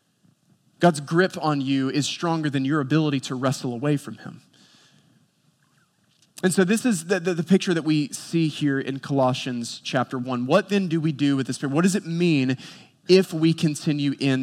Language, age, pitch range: English, 20-39, 130-160 Hz